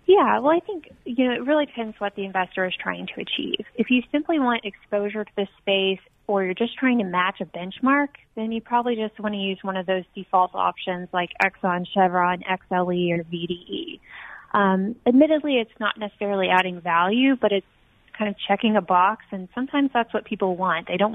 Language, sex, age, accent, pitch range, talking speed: English, female, 20-39, American, 190-225 Hz, 205 wpm